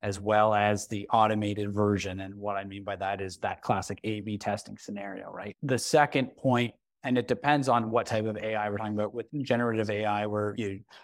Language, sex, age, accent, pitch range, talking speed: English, male, 30-49, American, 105-135 Hz, 205 wpm